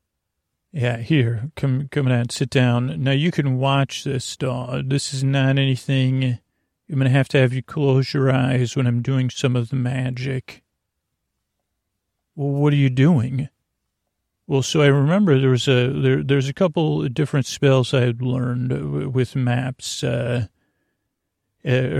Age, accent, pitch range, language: 40-59, American, 120-140 Hz, English